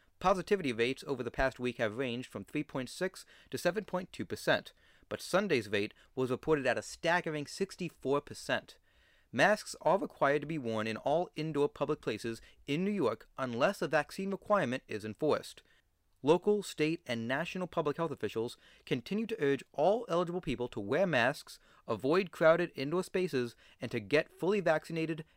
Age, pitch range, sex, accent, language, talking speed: 30-49, 125-165 Hz, male, American, English, 155 wpm